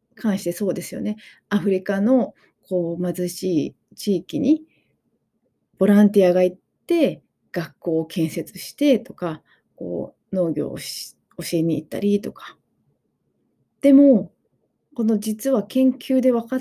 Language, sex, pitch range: Japanese, female, 185-260 Hz